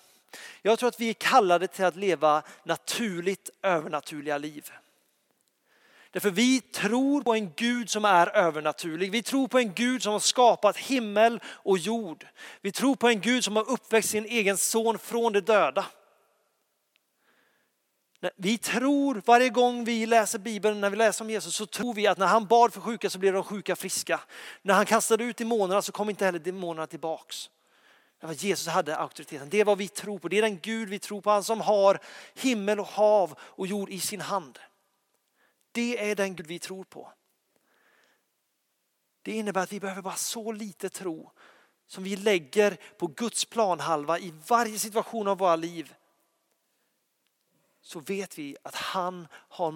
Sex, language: male, Swedish